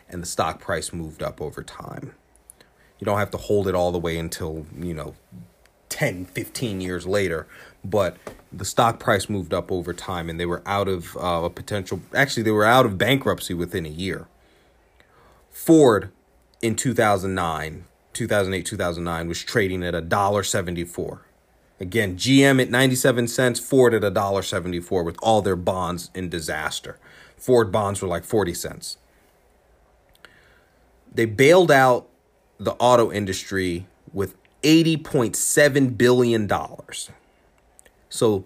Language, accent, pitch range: English, American, 90-120 Hz